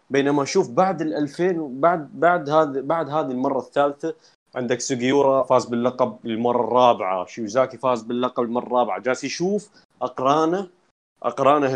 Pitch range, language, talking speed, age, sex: 125-170 Hz, Arabic, 145 wpm, 20-39, male